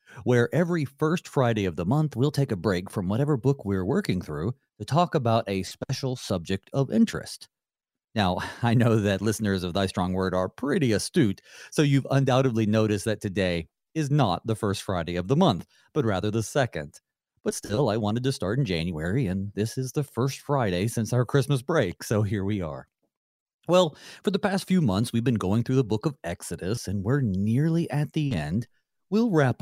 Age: 40-59